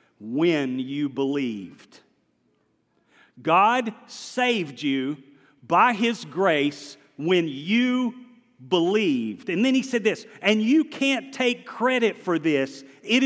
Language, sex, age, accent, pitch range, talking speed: English, male, 40-59, American, 130-195 Hz, 115 wpm